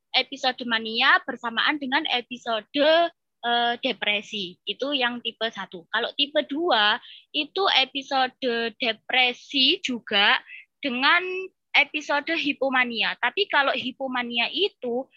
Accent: native